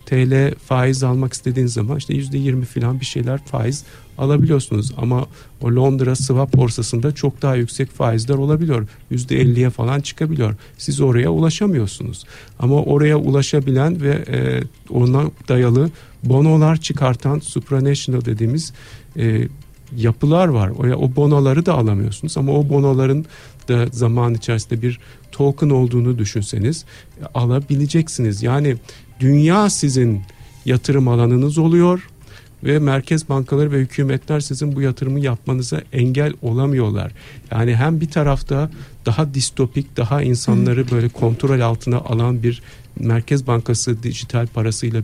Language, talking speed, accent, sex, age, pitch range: Turkish, 120 wpm, native, male, 50-69, 120-140 Hz